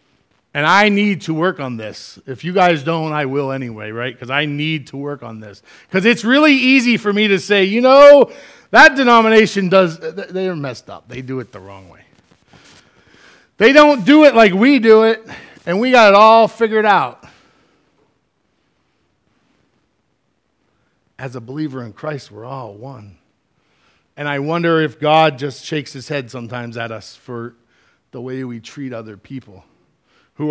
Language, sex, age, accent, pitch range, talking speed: English, male, 40-59, American, 130-185 Hz, 170 wpm